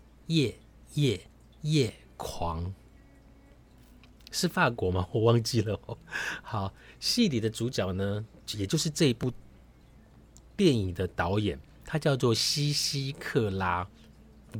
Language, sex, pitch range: Chinese, male, 100-145 Hz